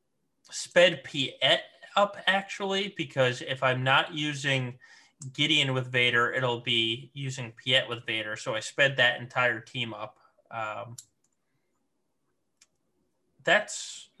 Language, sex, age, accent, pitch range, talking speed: English, male, 20-39, American, 115-140 Hz, 120 wpm